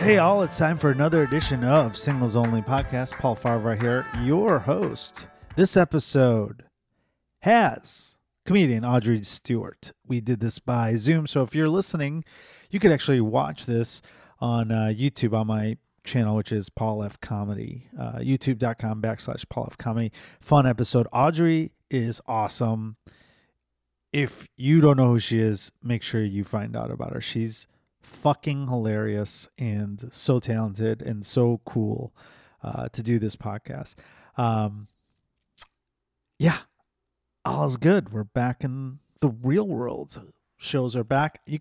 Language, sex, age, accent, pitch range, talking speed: English, male, 30-49, American, 110-140 Hz, 145 wpm